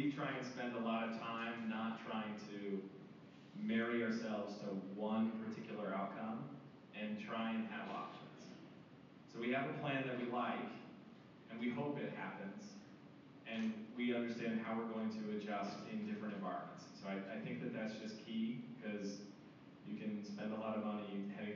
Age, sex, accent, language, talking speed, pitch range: 30-49, male, American, English, 175 wpm, 105-125 Hz